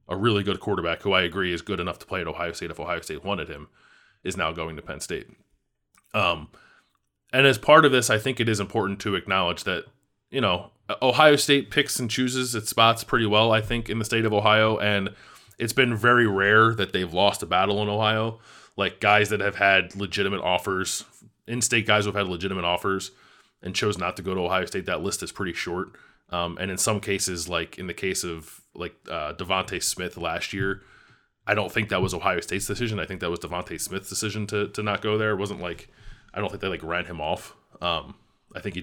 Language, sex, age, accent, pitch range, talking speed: English, male, 20-39, American, 90-110 Hz, 230 wpm